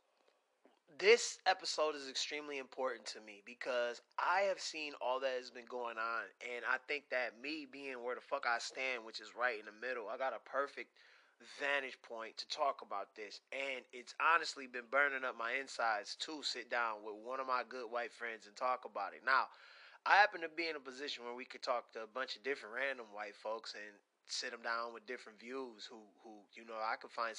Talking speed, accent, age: 220 wpm, American, 20-39